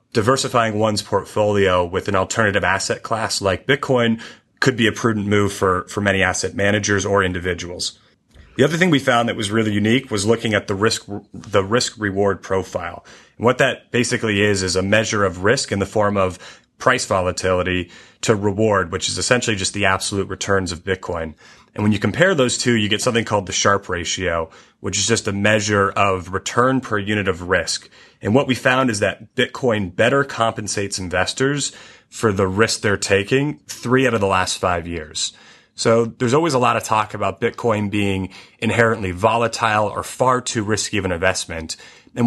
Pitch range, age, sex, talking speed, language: 95-115 Hz, 30-49, male, 190 wpm, English